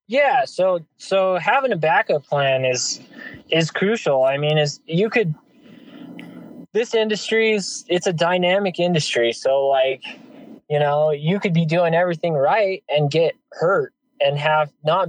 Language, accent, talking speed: English, American, 145 wpm